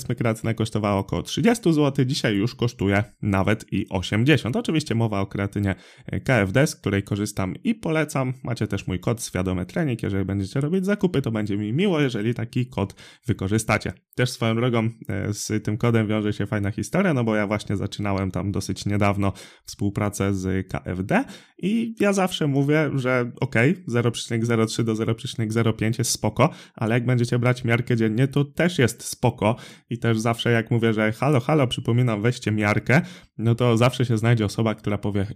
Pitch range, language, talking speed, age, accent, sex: 105-130 Hz, Polish, 170 wpm, 20-39, native, male